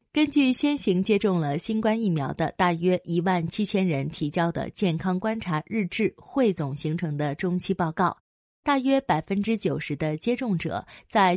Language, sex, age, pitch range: Chinese, female, 20-39, 165-235 Hz